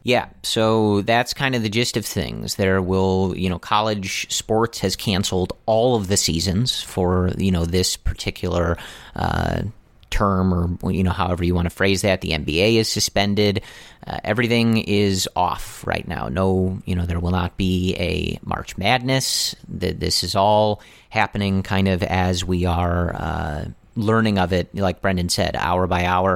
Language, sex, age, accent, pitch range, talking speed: English, male, 30-49, American, 90-105 Hz, 175 wpm